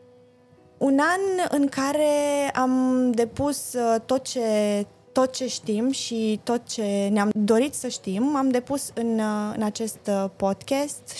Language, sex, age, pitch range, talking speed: Romanian, female, 20-39, 200-255 Hz, 130 wpm